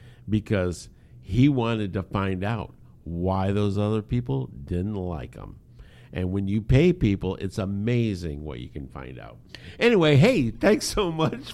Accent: American